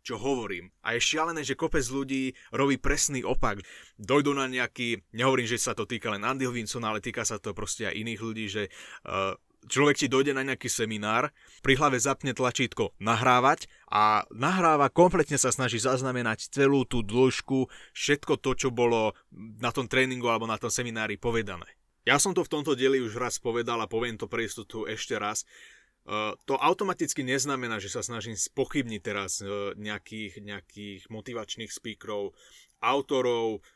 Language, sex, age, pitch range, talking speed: Slovak, male, 20-39, 110-130 Hz, 165 wpm